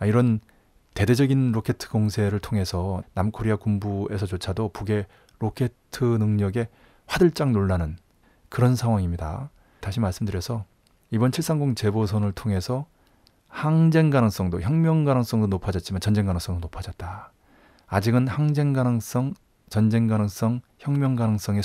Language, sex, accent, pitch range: Korean, male, native, 95-125 Hz